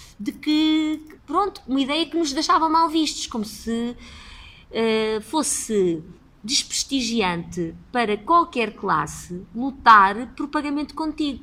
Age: 20-39